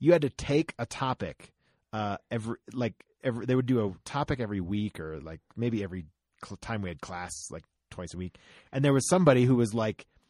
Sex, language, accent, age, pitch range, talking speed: male, English, American, 30-49, 100-130 Hz, 215 wpm